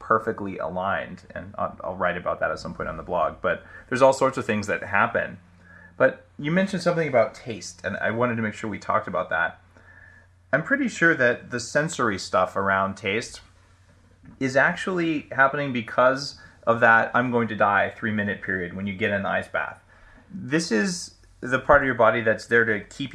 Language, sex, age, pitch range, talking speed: English, male, 30-49, 100-140 Hz, 200 wpm